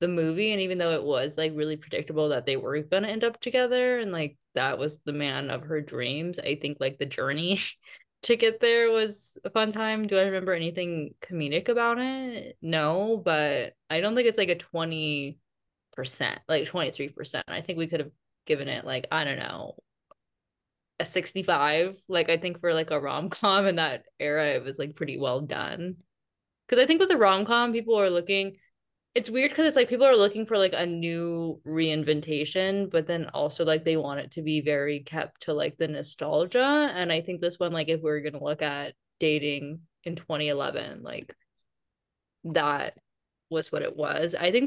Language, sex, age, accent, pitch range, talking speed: English, female, 20-39, American, 155-215 Hz, 195 wpm